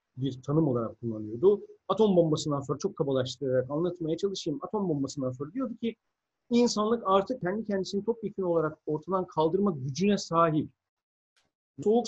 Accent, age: native, 50-69